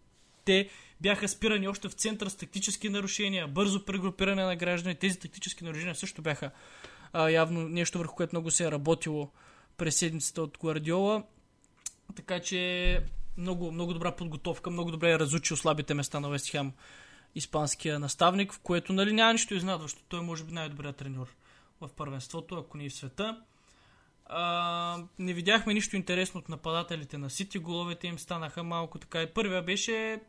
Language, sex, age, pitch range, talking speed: Bulgarian, male, 20-39, 160-200 Hz, 165 wpm